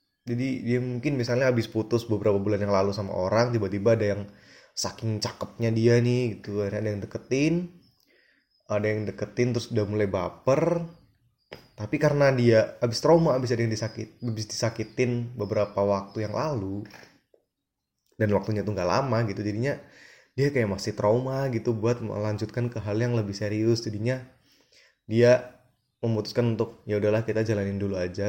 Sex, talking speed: male, 155 wpm